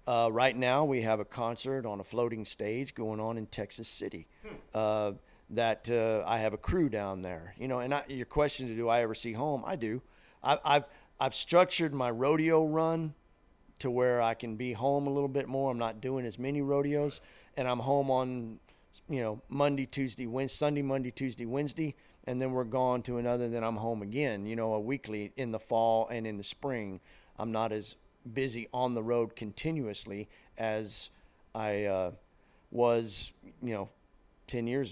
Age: 40-59